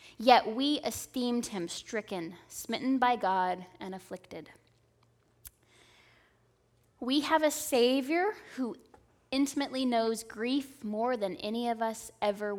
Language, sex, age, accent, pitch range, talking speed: English, female, 10-29, American, 190-245 Hz, 115 wpm